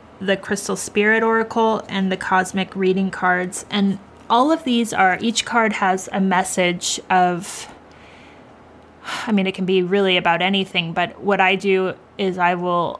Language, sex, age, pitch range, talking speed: English, female, 20-39, 185-215 Hz, 160 wpm